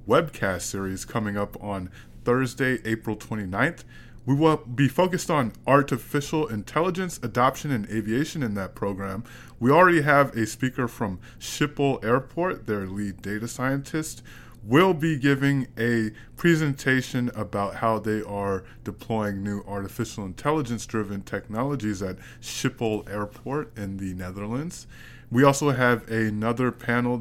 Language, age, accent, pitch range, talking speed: English, 20-39, American, 105-130 Hz, 130 wpm